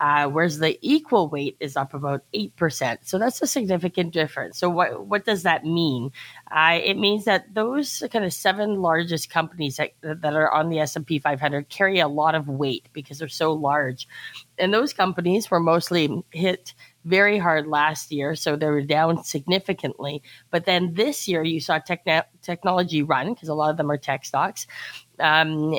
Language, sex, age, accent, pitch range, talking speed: English, female, 30-49, American, 145-175 Hz, 185 wpm